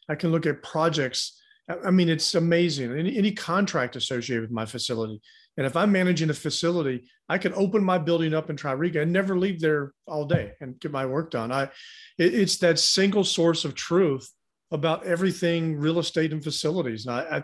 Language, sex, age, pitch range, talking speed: English, male, 40-59, 140-185 Hz, 195 wpm